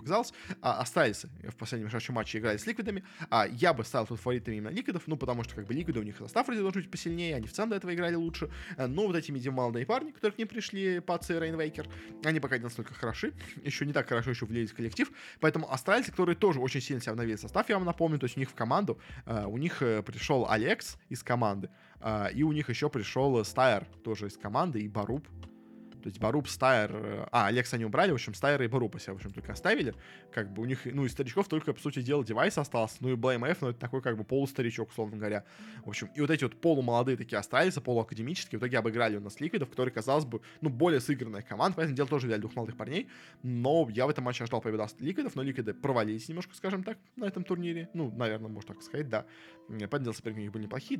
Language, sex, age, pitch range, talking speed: Russian, male, 20-39, 110-160 Hz, 240 wpm